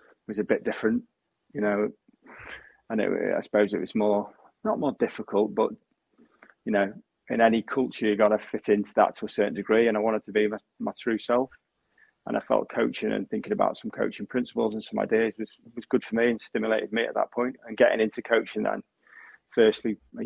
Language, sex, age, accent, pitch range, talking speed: English, male, 30-49, British, 100-110 Hz, 215 wpm